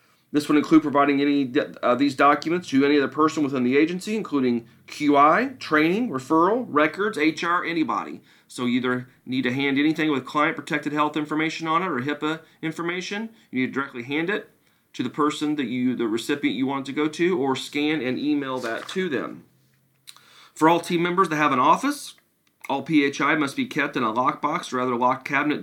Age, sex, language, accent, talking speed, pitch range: 40-59, male, English, American, 200 wpm, 130-155 Hz